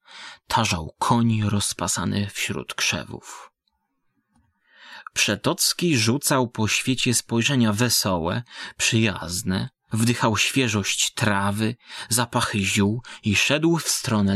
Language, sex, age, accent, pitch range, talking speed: Polish, male, 20-39, native, 105-120 Hz, 90 wpm